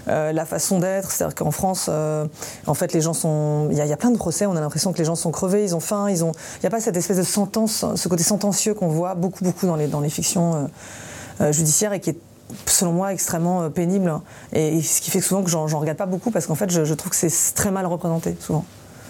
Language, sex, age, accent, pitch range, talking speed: French, female, 30-49, French, 155-195 Hz, 280 wpm